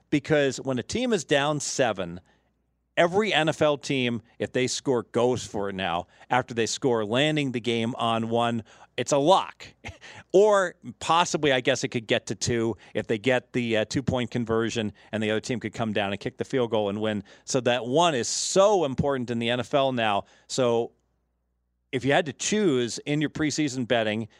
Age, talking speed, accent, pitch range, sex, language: 40-59, 190 wpm, American, 115-145 Hz, male, English